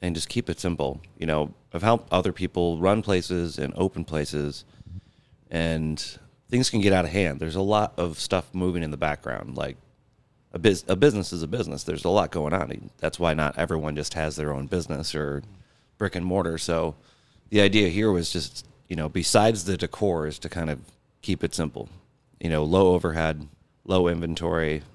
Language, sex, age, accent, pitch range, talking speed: English, male, 30-49, American, 80-100 Hz, 195 wpm